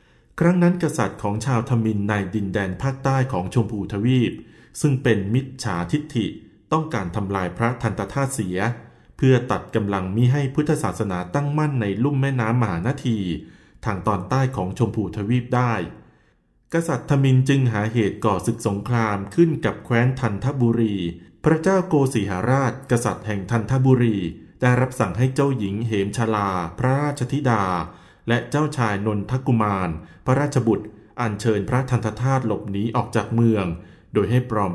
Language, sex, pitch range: Thai, male, 100-130 Hz